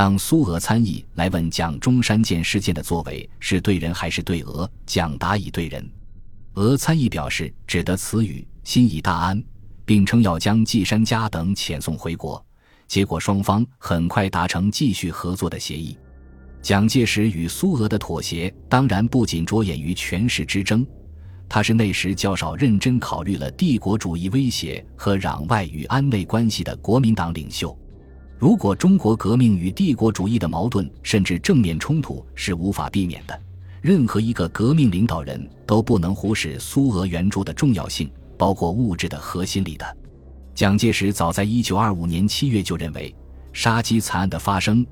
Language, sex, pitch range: Chinese, male, 85-110 Hz